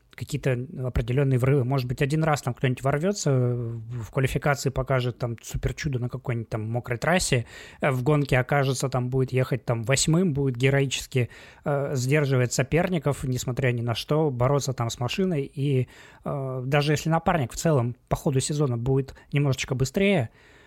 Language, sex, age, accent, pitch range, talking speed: Russian, male, 20-39, native, 125-150 Hz, 155 wpm